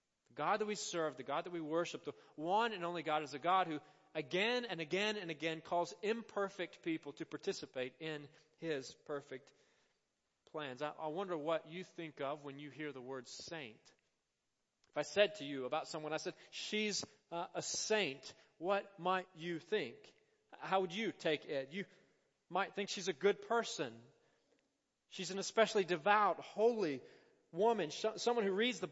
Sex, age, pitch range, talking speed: male, 40-59, 150-190 Hz, 175 wpm